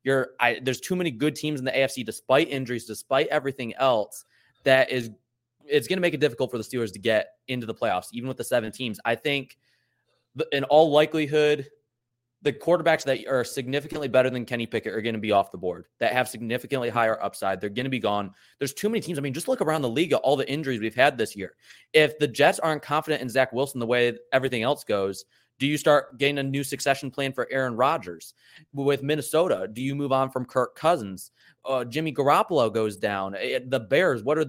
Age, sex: 20-39, male